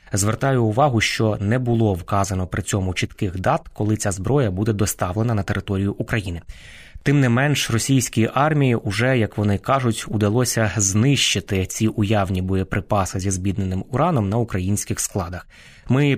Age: 20-39